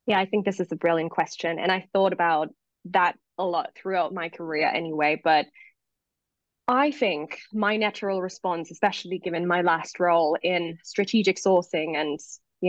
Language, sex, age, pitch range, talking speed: English, female, 20-39, 170-195 Hz, 165 wpm